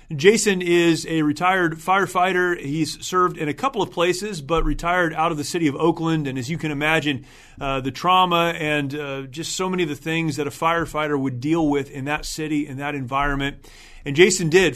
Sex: male